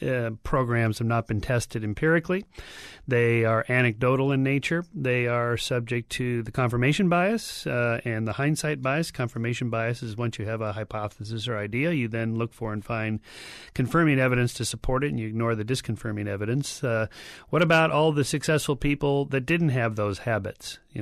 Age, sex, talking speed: 40-59, male, 185 wpm